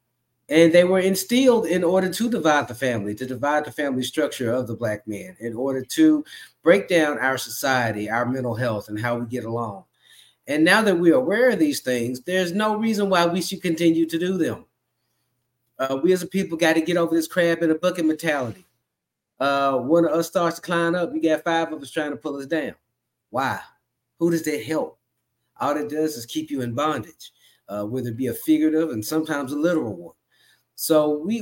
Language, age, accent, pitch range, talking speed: English, 30-49, American, 120-160 Hz, 215 wpm